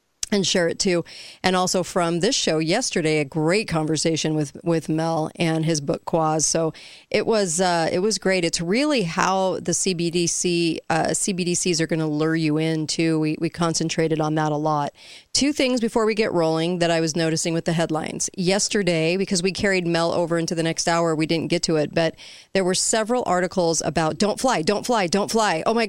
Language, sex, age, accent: English, female, 40-59, American